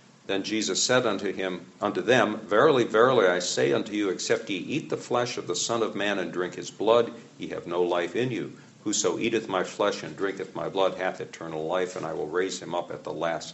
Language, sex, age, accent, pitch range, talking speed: English, male, 60-79, American, 85-105 Hz, 235 wpm